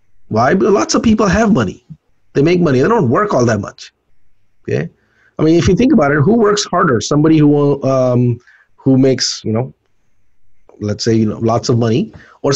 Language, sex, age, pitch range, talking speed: English, male, 30-49, 115-155 Hz, 200 wpm